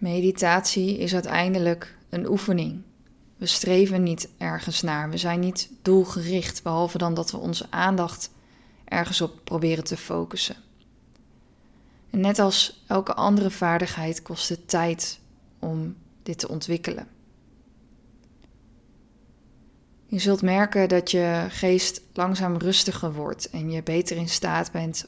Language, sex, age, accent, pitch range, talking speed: Dutch, female, 20-39, Dutch, 170-190 Hz, 125 wpm